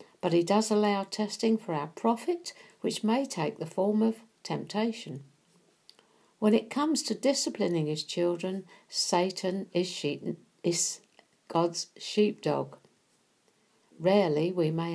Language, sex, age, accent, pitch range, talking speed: English, female, 60-79, British, 170-225 Hz, 120 wpm